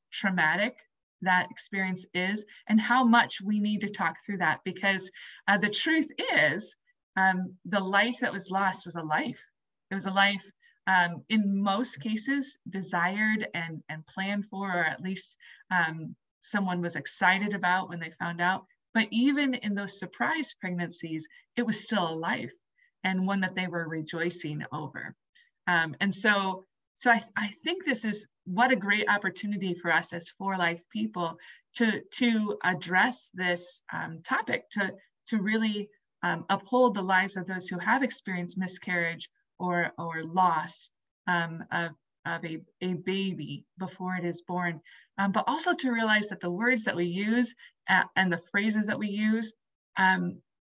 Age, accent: 20-39, American